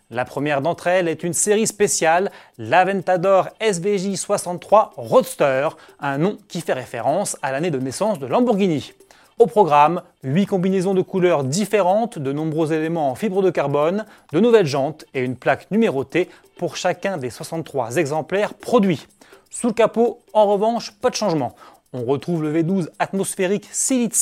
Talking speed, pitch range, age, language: 160 wpm, 145-200 Hz, 30-49, French